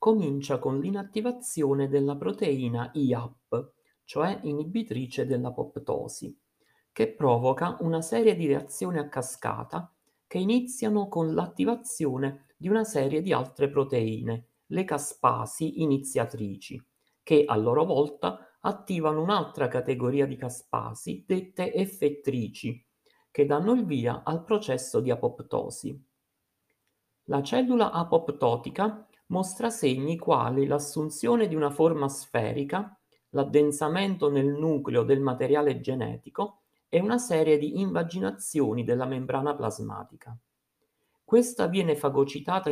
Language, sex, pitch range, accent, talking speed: Italian, male, 130-195 Hz, native, 110 wpm